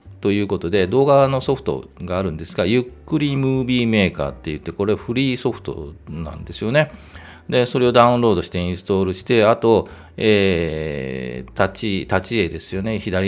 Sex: male